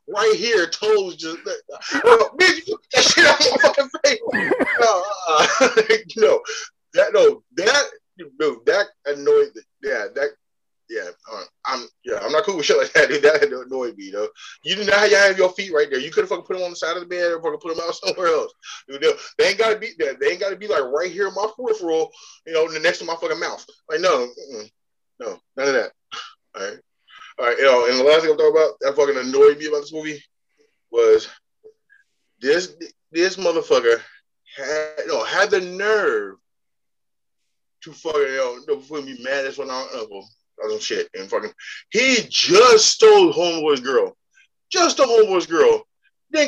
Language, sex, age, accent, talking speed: English, male, 20-39, American, 180 wpm